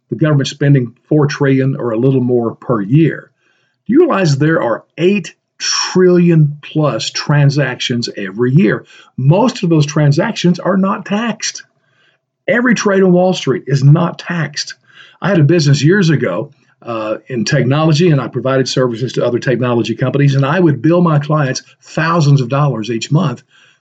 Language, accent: English, American